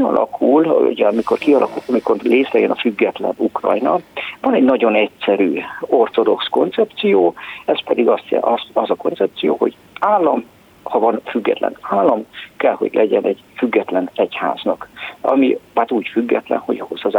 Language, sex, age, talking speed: Hungarian, male, 50-69, 140 wpm